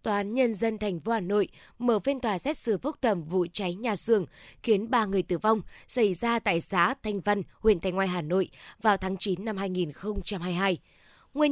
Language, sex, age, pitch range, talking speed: Vietnamese, female, 20-39, 190-225 Hz, 210 wpm